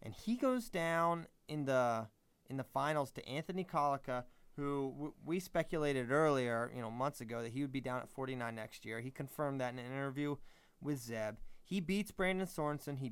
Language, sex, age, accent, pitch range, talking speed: English, male, 30-49, American, 125-155 Hz, 195 wpm